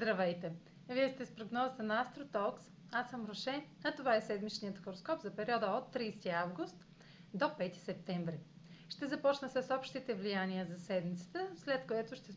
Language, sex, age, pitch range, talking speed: Bulgarian, female, 30-49, 180-250 Hz, 160 wpm